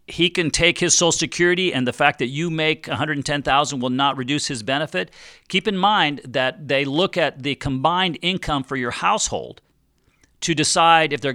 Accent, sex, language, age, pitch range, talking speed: American, male, English, 50-69, 130-165 Hz, 185 wpm